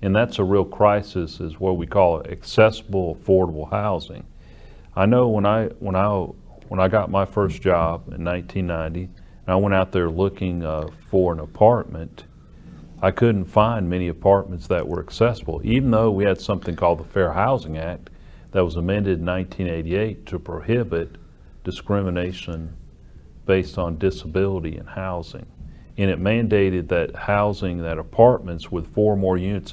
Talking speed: 155 wpm